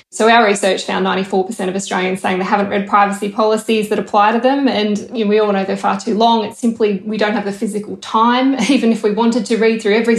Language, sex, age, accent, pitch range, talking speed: English, female, 10-29, Australian, 200-230 Hz, 240 wpm